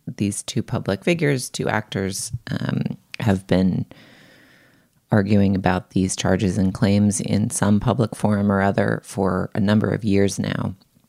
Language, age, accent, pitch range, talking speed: English, 30-49, American, 105-130 Hz, 145 wpm